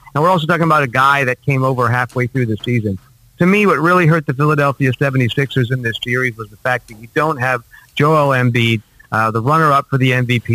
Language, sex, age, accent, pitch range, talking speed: English, male, 40-59, American, 120-145 Hz, 230 wpm